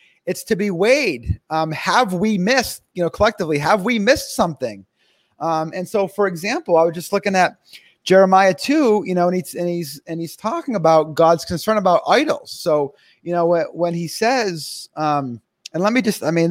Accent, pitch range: American, 155-205 Hz